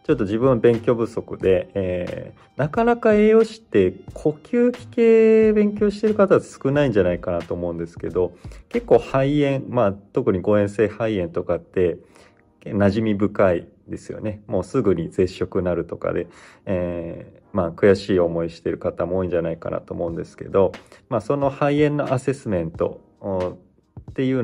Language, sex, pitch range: Japanese, male, 95-135 Hz